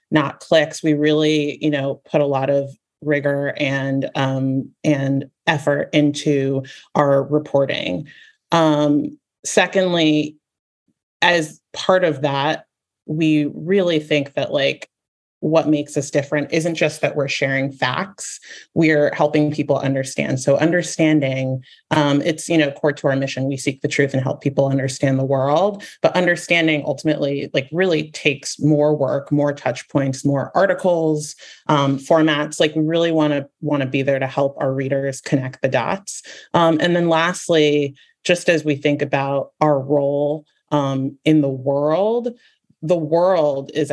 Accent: American